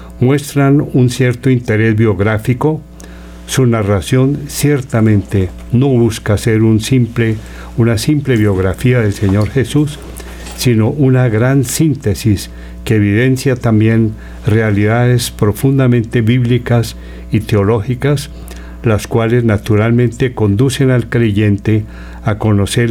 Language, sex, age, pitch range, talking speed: Spanish, male, 60-79, 95-125 Hz, 95 wpm